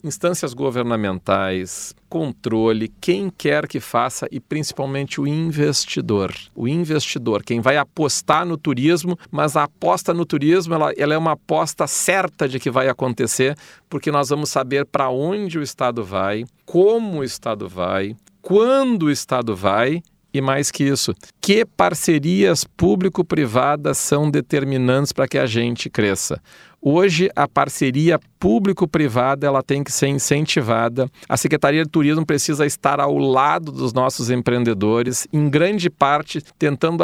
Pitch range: 130-170 Hz